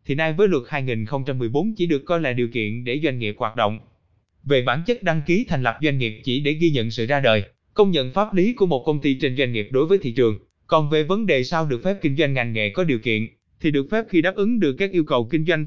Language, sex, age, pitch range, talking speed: Vietnamese, male, 20-39, 125-175 Hz, 280 wpm